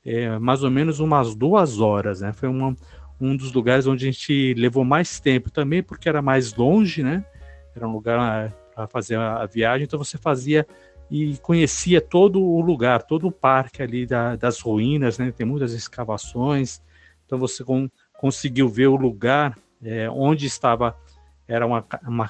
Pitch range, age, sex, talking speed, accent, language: 115-145 Hz, 50-69, male, 160 wpm, Brazilian, Portuguese